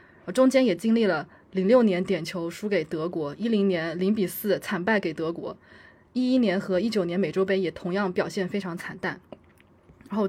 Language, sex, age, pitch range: Chinese, female, 20-39, 180-220 Hz